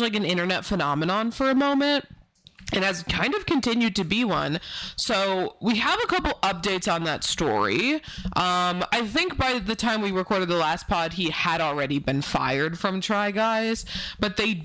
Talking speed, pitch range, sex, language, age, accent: 185 wpm, 165-230 Hz, female, English, 20-39, American